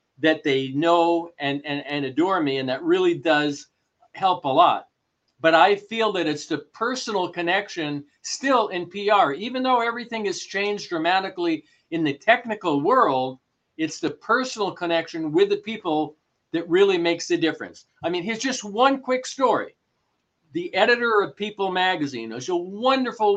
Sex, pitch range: male, 160-235 Hz